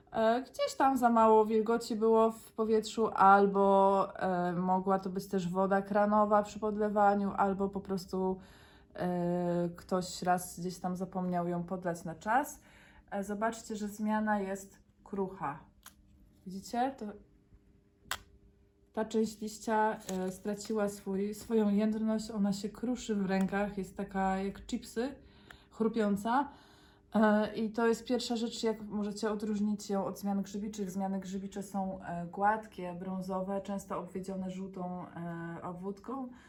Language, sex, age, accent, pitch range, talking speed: Polish, female, 20-39, native, 190-220 Hz, 120 wpm